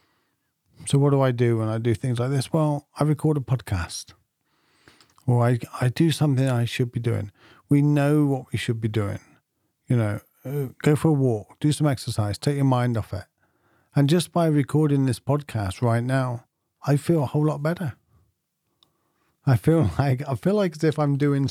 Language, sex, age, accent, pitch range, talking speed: English, male, 50-69, British, 120-165 Hz, 195 wpm